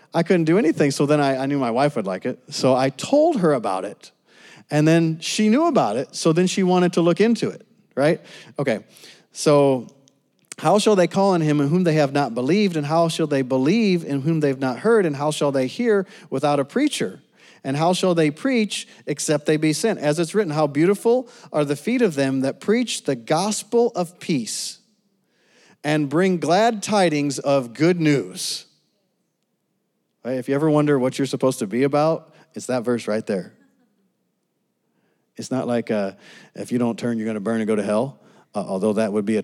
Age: 40-59